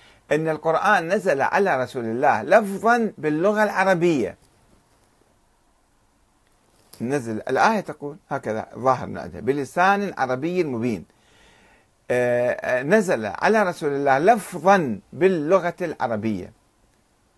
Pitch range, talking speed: 115-185 Hz, 85 wpm